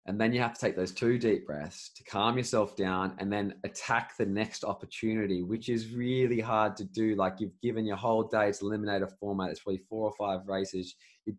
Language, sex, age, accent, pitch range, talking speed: English, male, 20-39, Australian, 95-110 Hz, 220 wpm